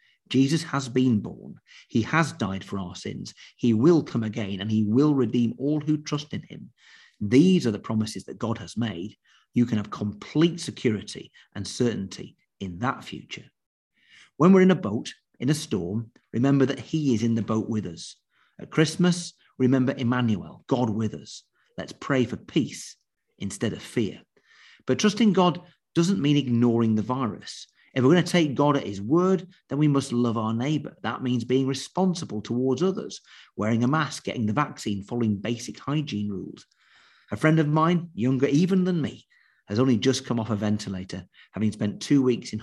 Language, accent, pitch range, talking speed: English, British, 110-150 Hz, 185 wpm